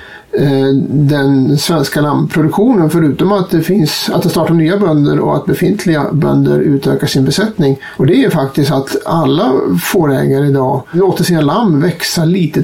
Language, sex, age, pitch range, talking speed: Swedish, male, 50-69, 145-195 Hz, 150 wpm